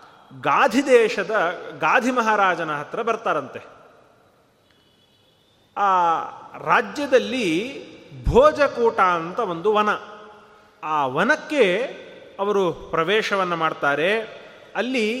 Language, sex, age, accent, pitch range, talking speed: Kannada, male, 30-49, native, 180-250 Hz, 70 wpm